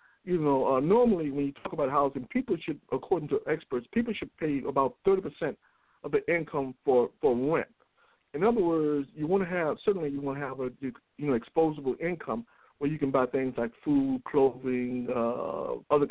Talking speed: 195 wpm